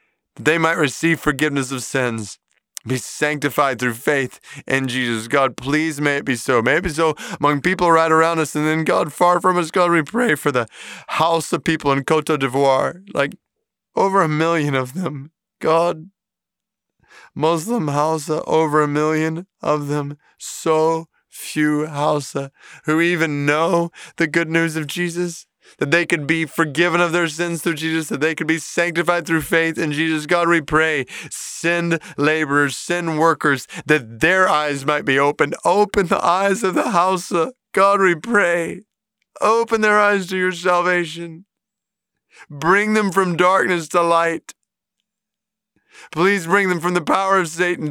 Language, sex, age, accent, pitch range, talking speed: English, male, 20-39, American, 150-180 Hz, 165 wpm